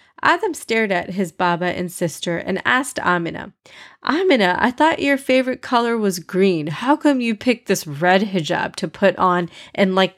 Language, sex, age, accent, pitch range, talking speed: English, female, 30-49, American, 180-255 Hz, 175 wpm